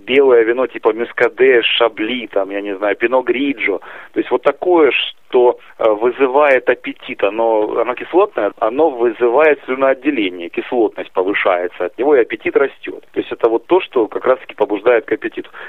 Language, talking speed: Russian, 165 wpm